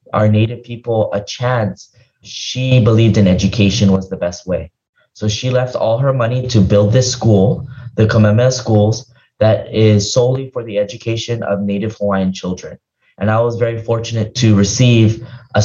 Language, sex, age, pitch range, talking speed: English, male, 20-39, 100-125 Hz, 170 wpm